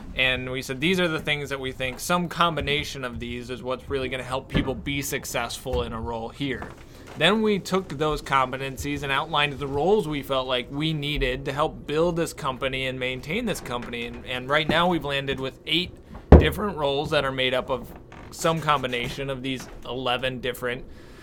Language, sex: English, male